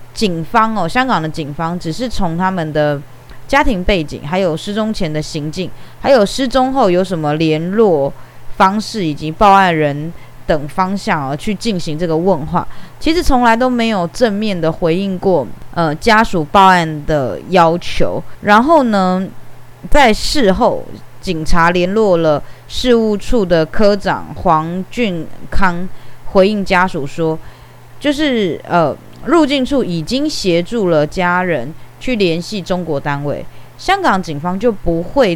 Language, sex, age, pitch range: Chinese, female, 20-39, 155-210 Hz